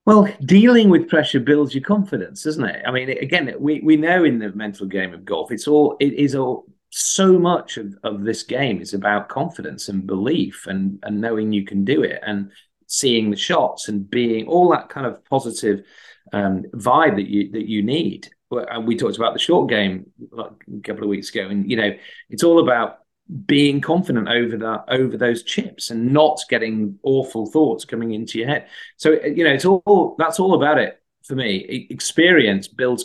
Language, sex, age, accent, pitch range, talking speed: English, male, 40-59, British, 105-150 Hz, 200 wpm